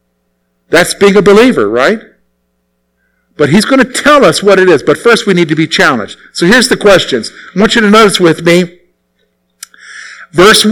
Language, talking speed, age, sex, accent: English, 185 wpm, 50-69, male, American